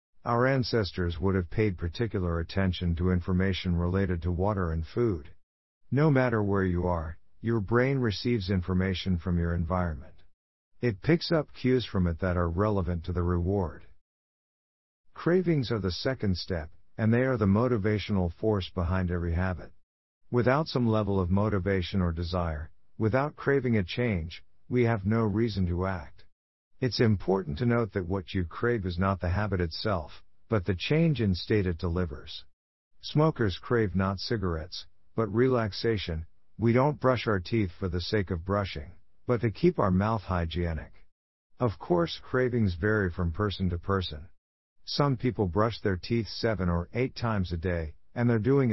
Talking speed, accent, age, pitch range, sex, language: 165 wpm, American, 50-69, 90-115 Hz, male, English